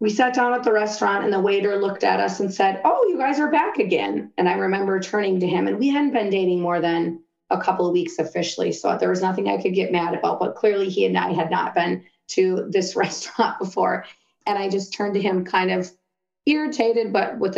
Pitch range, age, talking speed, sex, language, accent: 175-210 Hz, 30-49, 240 wpm, female, English, American